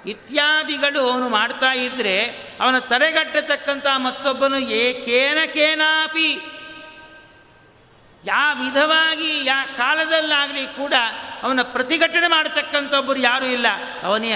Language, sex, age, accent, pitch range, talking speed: Kannada, male, 50-69, native, 255-290 Hz, 85 wpm